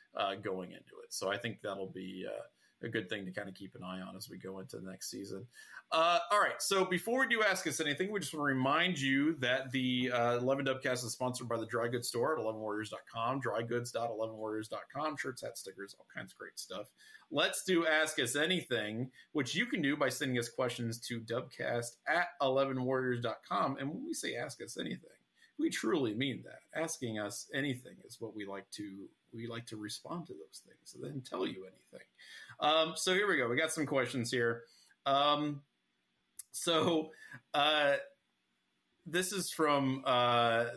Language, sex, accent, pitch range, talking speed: English, male, American, 115-155 Hz, 195 wpm